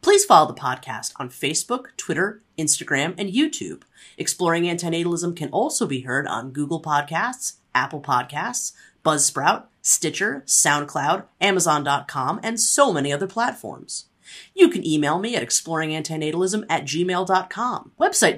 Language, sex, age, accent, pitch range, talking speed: English, female, 30-49, American, 145-240 Hz, 125 wpm